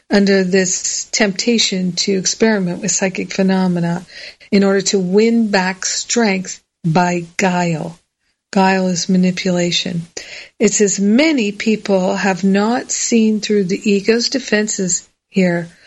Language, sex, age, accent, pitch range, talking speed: English, female, 50-69, American, 190-225 Hz, 115 wpm